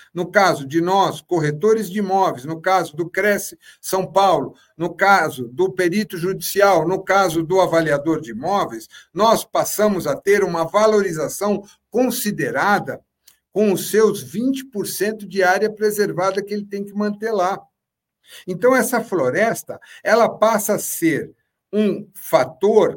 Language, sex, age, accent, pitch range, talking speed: Portuguese, male, 60-79, Brazilian, 160-210 Hz, 135 wpm